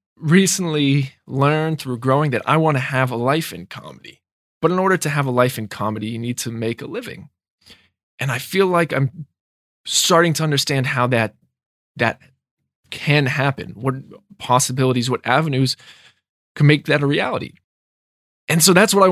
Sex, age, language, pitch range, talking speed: male, 20-39, English, 125-165 Hz, 175 wpm